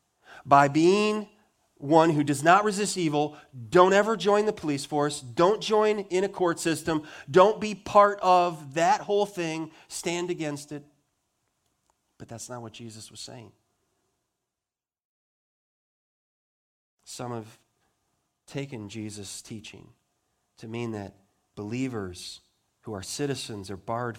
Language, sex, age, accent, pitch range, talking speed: English, male, 40-59, American, 105-145 Hz, 125 wpm